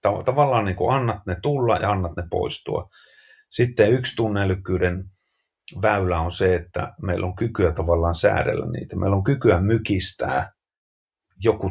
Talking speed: 135 wpm